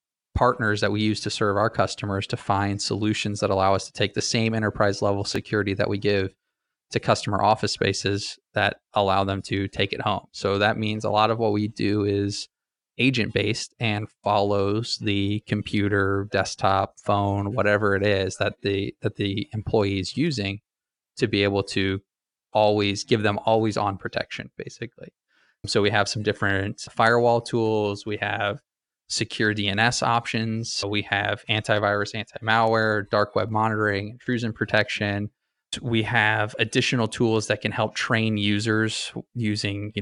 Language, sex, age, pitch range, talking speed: English, male, 20-39, 100-110 Hz, 160 wpm